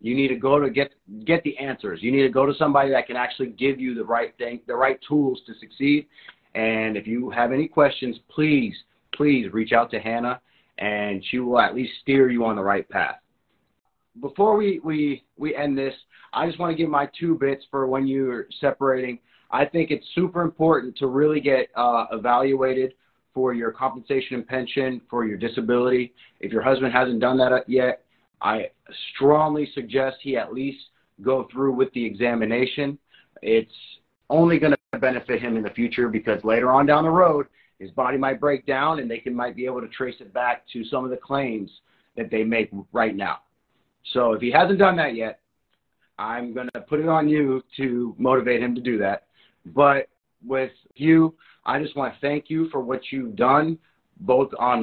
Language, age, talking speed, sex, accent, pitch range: English, 30-49, 195 wpm, male, American, 120-145 Hz